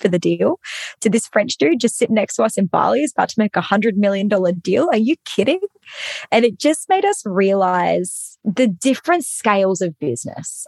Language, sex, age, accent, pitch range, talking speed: English, female, 20-39, Australian, 190-260 Hz, 210 wpm